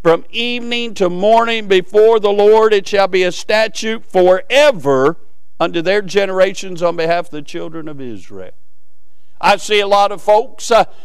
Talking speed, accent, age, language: 165 wpm, American, 50-69, English